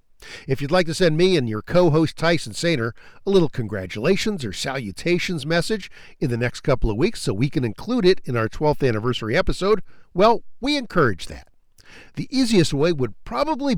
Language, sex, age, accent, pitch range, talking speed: English, male, 50-69, American, 135-200 Hz, 185 wpm